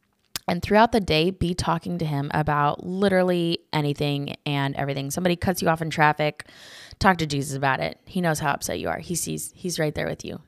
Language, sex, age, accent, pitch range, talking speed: English, female, 10-29, American, 140-175 Hz, 210 wpm